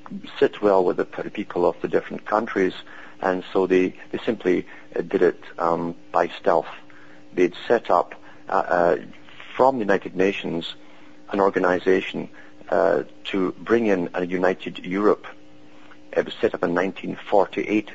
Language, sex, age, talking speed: English, male, 50-69, 145 wpm